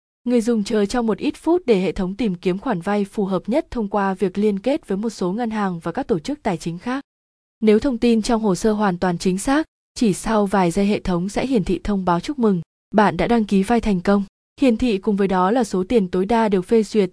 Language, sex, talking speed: Vietnamese, female, 270 wpm